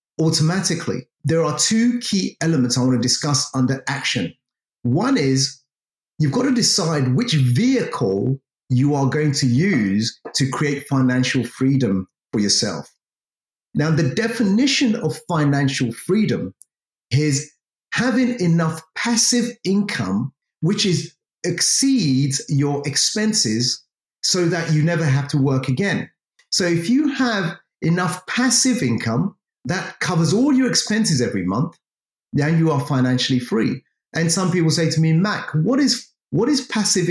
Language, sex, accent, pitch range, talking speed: English, male, British, 135-205 Hz, 140 wpm